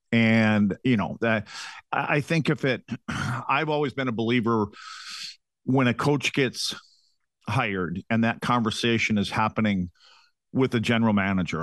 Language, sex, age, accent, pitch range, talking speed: English, male, 50-69, American, 100-125 Hz, 145 wpm